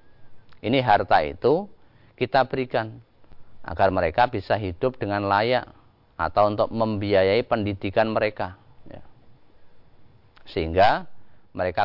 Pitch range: 95-120 Hz